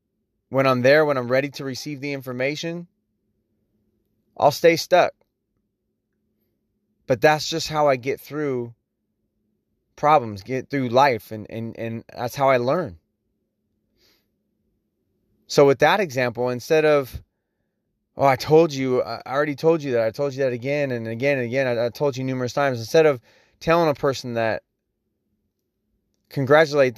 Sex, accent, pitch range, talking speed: male, American, 120-145 Hz, 145 wpm